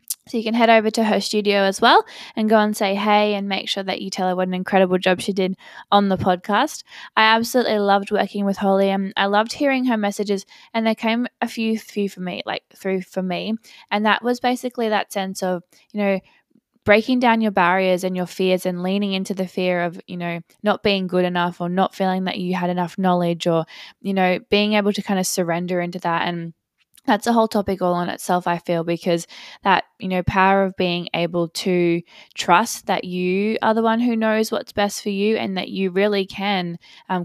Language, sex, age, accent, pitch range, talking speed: English, female, 20-39, Australian, 180-210 Hz, 225 wpm